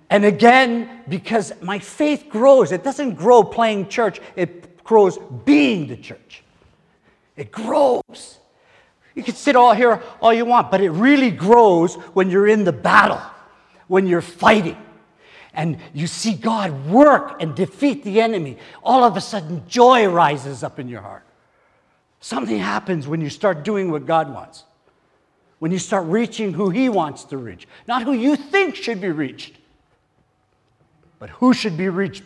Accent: American